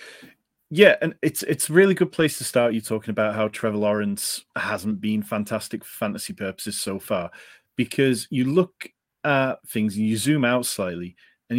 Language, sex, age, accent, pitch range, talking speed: English, male, 30-49, British, 105-135 Hz, 180 wpm